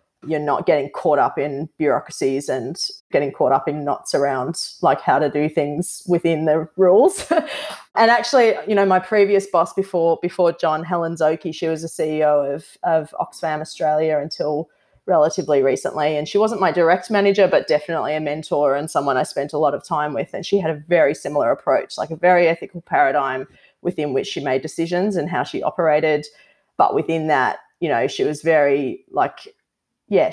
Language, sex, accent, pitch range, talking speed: English, female, Australian, 150-190 Hz, 190 wpm